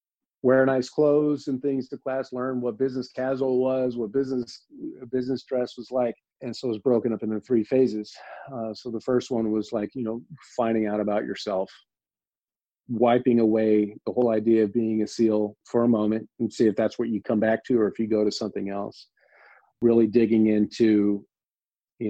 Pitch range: 105-125 Hz